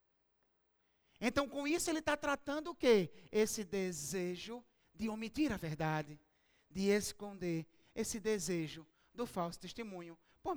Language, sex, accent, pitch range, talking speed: Portuguese, male, Brazilian, 190-275 Hz, 125 wpm